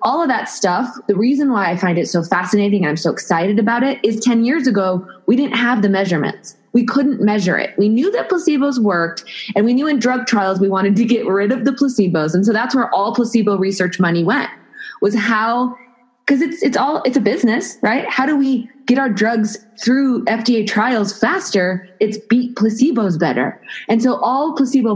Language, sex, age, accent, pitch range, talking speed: English, female, 20-39, American, 195-250 Hz, 210 wpm